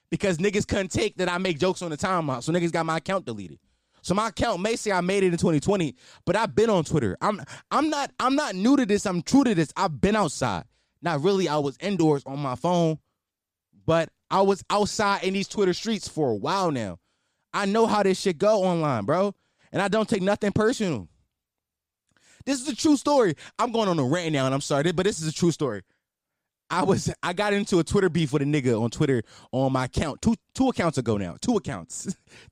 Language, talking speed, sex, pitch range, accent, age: English, 230 wpm, male, 135-200 Hz, American, 20-39